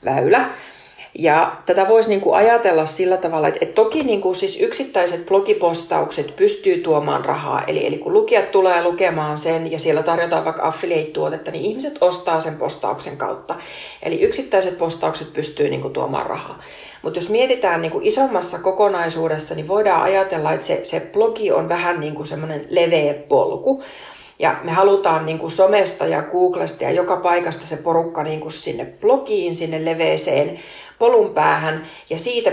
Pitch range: 165-220 Hz